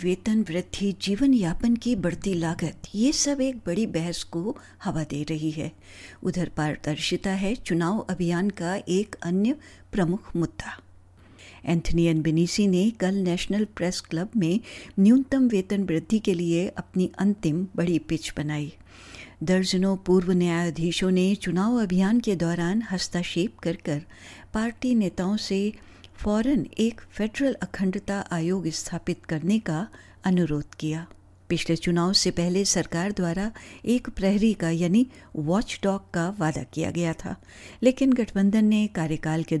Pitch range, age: 165-205 Hz, 60-79